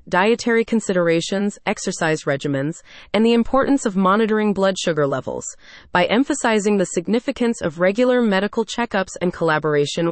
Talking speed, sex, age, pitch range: 130 wpm, female, 30-49, 170-230 Hz